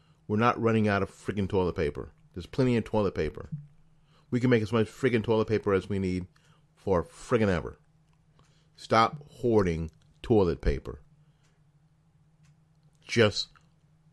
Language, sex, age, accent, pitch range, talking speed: English, male, 40-59, American, 95-150 Hz, 135 wpm